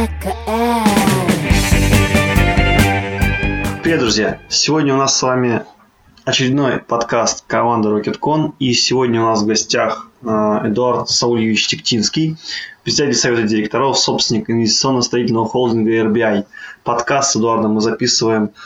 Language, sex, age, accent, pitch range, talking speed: Russian, male, 20-39, native, 115-130 Hz, 105 wpm